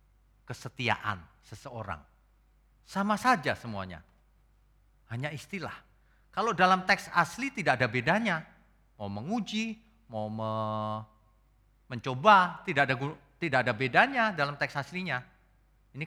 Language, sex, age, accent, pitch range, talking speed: Indonesian, male, 40-59, native, 105-170 Hz, 105 wpm